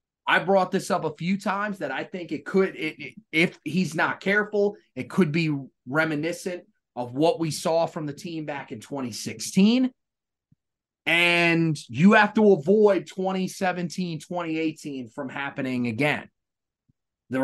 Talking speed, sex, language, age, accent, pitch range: 140 wpm, male, English, 30-49, American, 145-190 Hz